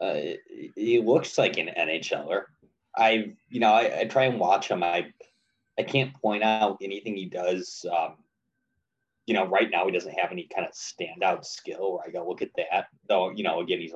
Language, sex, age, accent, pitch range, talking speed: English, male, 20-39, American, 90-135 Hz, 200 wpm